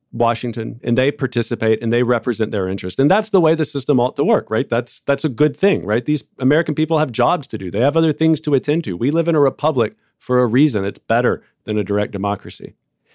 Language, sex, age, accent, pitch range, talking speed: English, male, 40-59, American, 115-155 Hz, 240 wpm